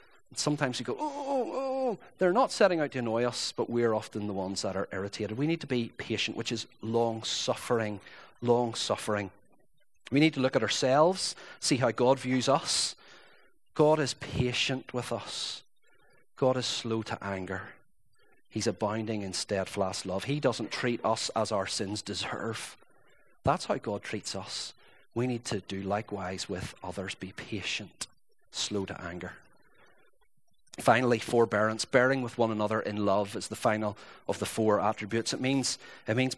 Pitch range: 110-185 Hz